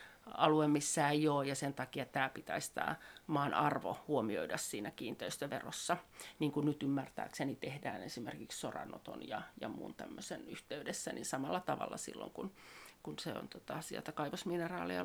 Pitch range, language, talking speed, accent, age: 145-185 Hz, Finnish, 150 wpm, native, 40-59